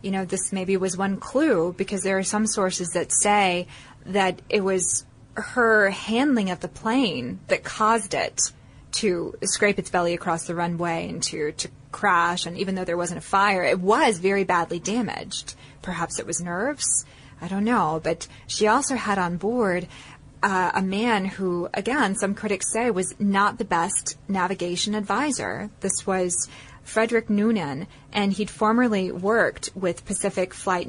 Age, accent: 20-39, American